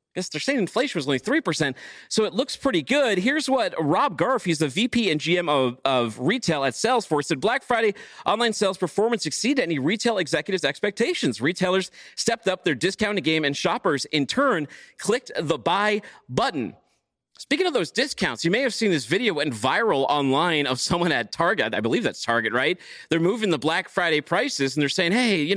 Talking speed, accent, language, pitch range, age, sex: 195 wpm, American, English, 155-235 Hz, 40-59, male